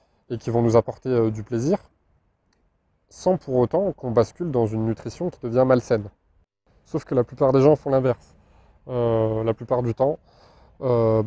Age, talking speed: 20-39, 175 wpm